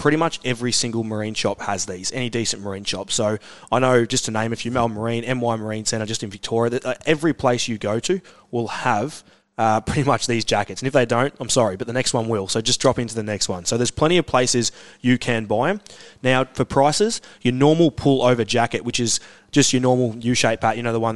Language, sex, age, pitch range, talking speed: English, male, 20-39, 110-130 Hz, 245 wpm